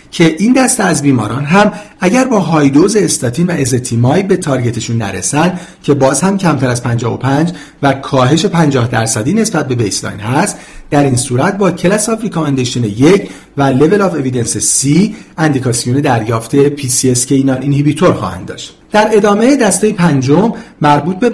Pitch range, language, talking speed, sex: 130-180 Hz, Persian, 165 wpm, male